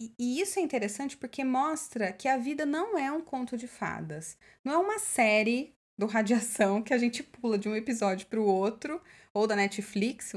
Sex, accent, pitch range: female, Brazilian, 200-275 Hz